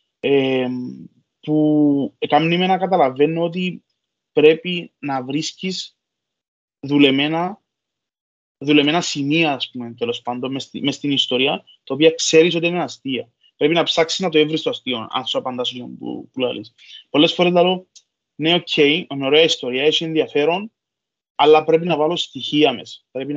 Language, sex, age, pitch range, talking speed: Greek, male, 20-39, 135-165 Hz, 145 wpm